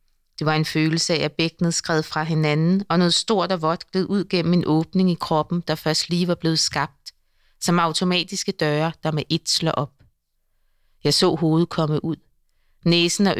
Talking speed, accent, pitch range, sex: 190 wpm, native, 155-180 Hz, female